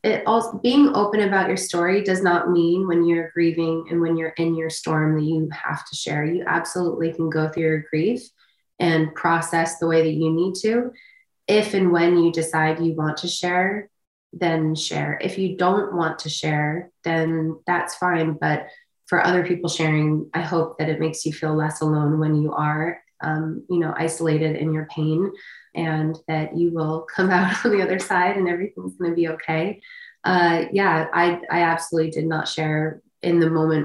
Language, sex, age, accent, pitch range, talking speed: English, female, 20-39, American, 160-180 Hz, 195 wpm